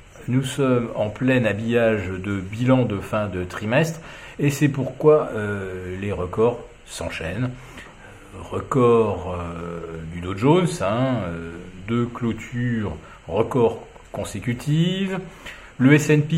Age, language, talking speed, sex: 40-59, French, 115 wpm, male